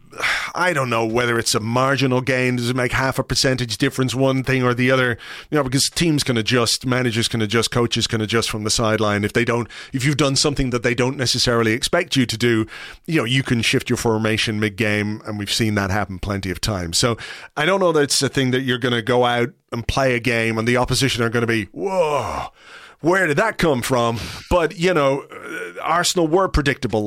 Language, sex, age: English, male, 30-49